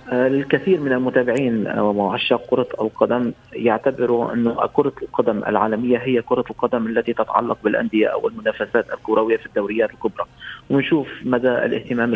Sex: male